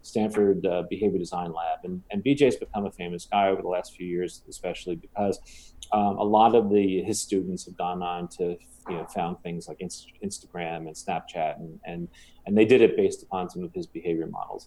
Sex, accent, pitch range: male, American, 100-160 Hz